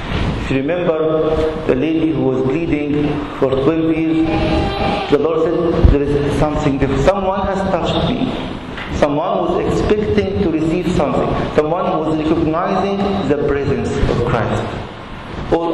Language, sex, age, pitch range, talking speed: English, male, 50-69, 130-160 Hz, 130 wpm